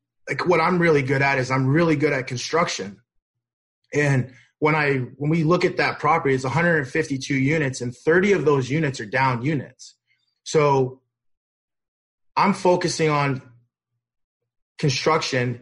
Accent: American